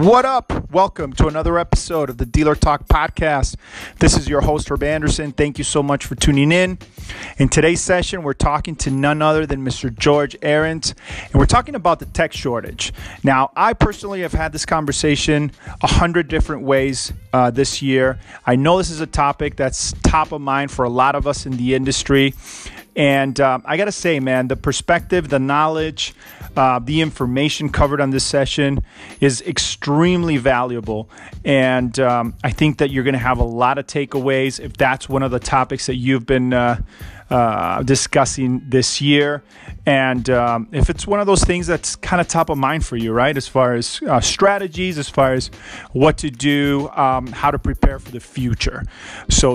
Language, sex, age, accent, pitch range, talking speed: English, male, 30-49, American, 130-155 Hz, 195 wpm